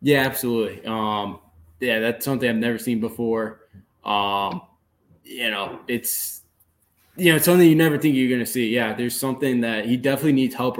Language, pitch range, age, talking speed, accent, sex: English, 110-135 Hz, 20-39, 185 wpm, American, male